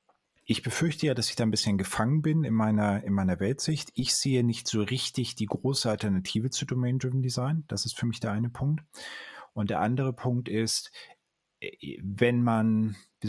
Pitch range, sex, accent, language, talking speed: 105-125 Hz, male, German, German, 185 wpm